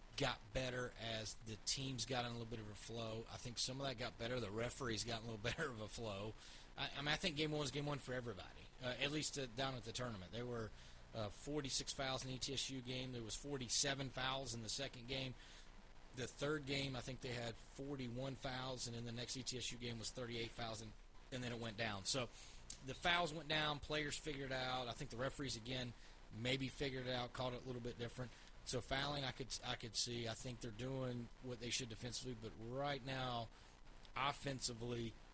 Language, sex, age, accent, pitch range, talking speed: English, male, 30-49, American, 115-135 Hz, 220 wpm